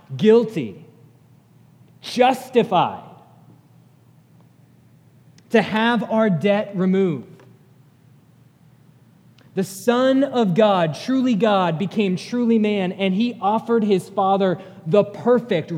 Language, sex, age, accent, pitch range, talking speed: English, male, 30-49, American, 150-210 Hz, 90 wpm